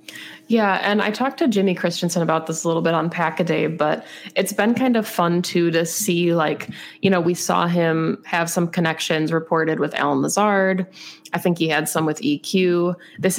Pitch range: 160-180 Hz